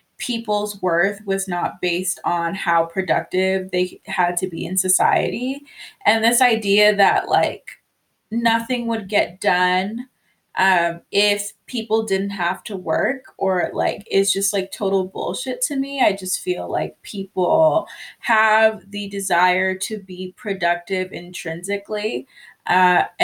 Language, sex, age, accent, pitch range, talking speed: English, female, 20-39, American, 180-210 Hz, 135 wpm